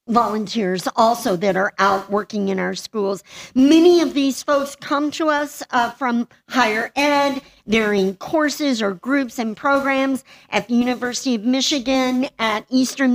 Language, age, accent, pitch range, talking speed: English, 50-69, American, 215-275 Hz, 155 wpm